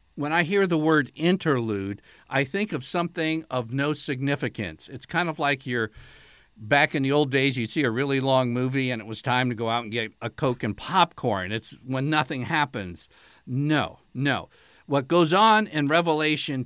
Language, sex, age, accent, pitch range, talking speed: English, male, 50-69, American, 120-155 Hz, 190 wpm